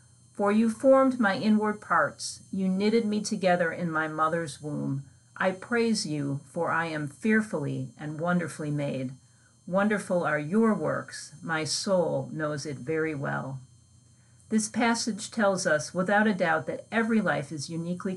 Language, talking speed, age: English, 150 wpm, 50-69